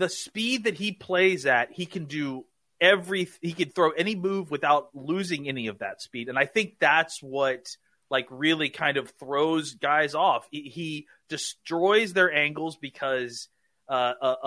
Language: English